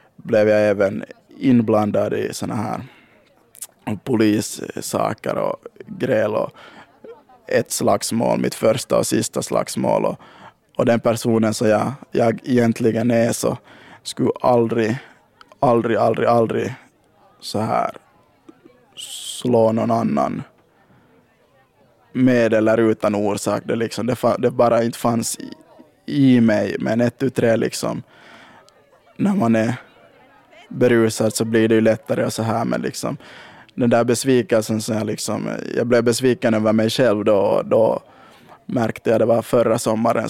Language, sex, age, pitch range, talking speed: Swedish, male, 20-39, 110-125 Hz, 130 wpm